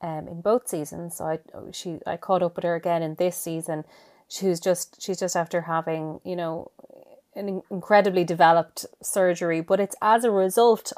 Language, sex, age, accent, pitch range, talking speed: English, female, 30-49, Irish, 170-205 Hz, 185 wpm